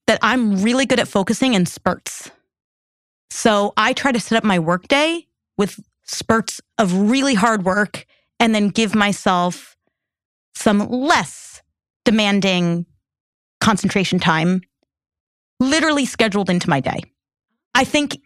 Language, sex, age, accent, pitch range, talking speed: English, female, 30-49, American, 190-245 Hz, 130 wpm